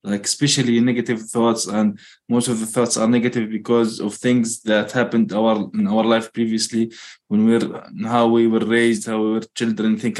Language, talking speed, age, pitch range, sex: English, 180 wpm, 20-39, 110-125 Hz, male